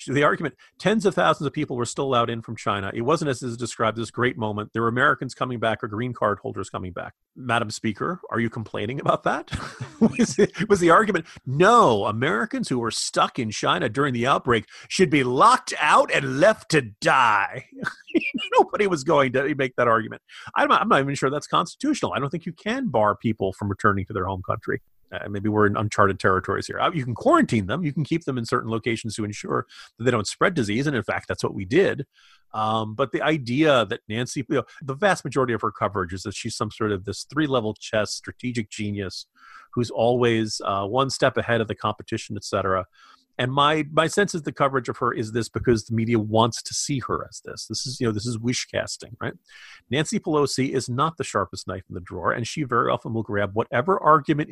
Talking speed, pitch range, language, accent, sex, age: 225 wpm, 110-150 Hz, English, American, male, 40-59